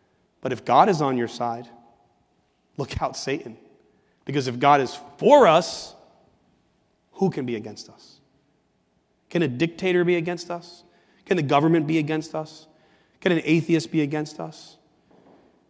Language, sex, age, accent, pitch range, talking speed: English, male, 30-49, American, 135-185 Hz, 150 wpm